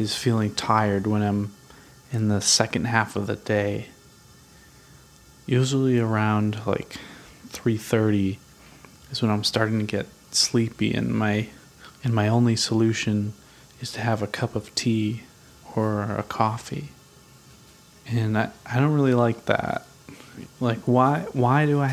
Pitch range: 105-125 Hz